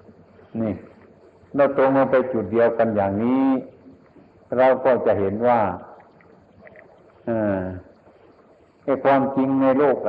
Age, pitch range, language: 60-79, 100-125 Hz, Thai